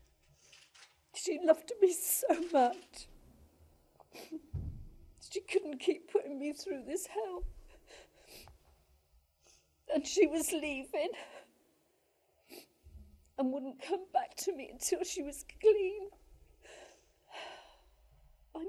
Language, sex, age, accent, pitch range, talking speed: English, female, 40-59, British, 265-360 Hz, 90 wpm